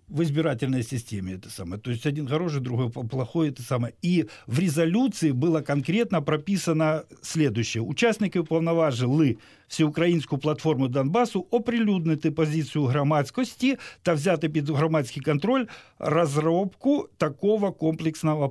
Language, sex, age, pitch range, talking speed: Russian, male, 50-69, 130-170 Hz, 115 wpm